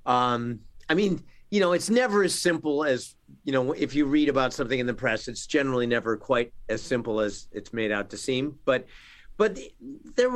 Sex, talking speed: male, 205 wpm